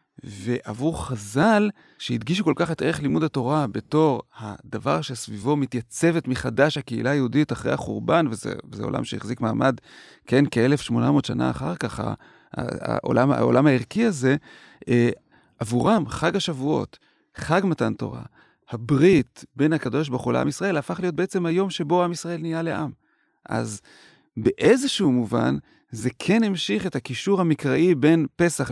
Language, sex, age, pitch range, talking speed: Hebrew, male, 30-49, 130-175 Hz, 135 wpm